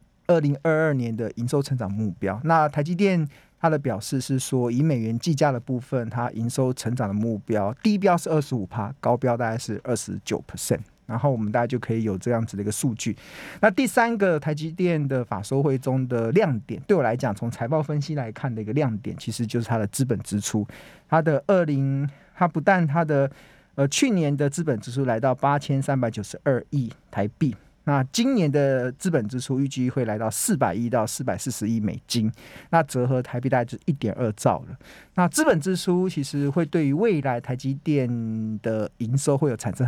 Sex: male